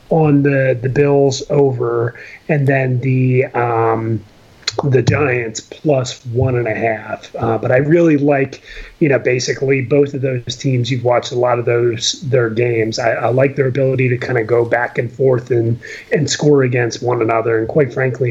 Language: English